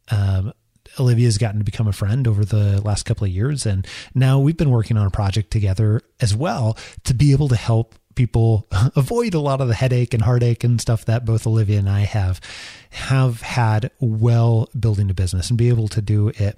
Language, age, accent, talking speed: English, 30-49, American, 215 wpm